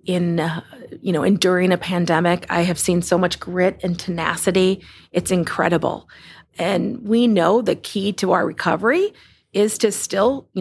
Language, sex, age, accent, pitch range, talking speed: English, female, 40-59, American, 180-230 Hz, 165 wpm